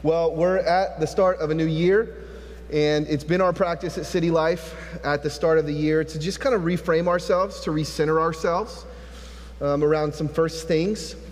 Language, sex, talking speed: English, male, 195 wpm